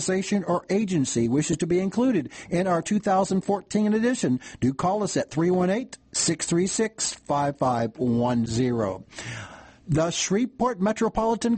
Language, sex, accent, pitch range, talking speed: English, male, American, 150-215 Hz, 100 wpm